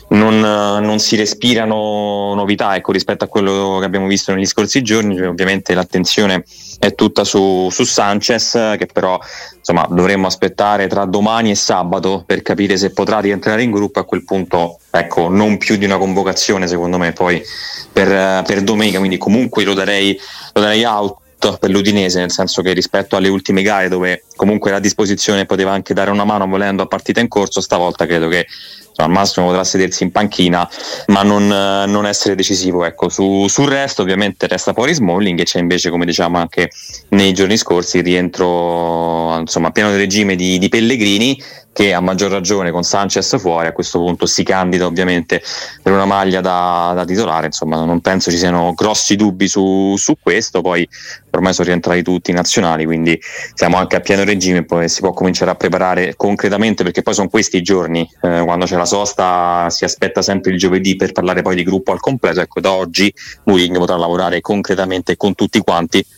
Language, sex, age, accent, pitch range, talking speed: Italian, male, 20-39, native, 90-100 Hz, 185 wpm